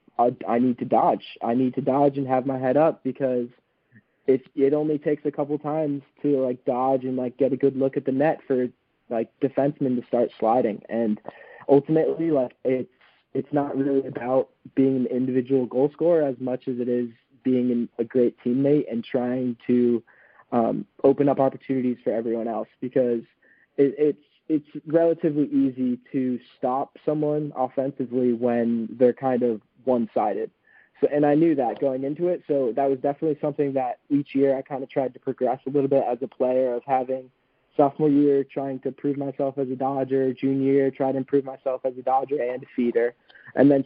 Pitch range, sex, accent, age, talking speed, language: 125-140 Hz, male, American, 20-39, 190 wpm, English